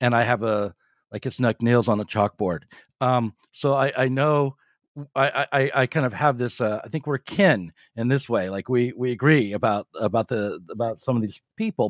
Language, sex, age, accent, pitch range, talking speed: English, male, 60-79, American, 110-140 Hz, 215 wpm